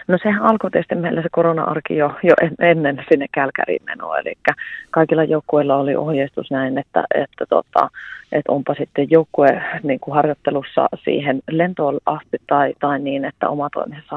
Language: Finnish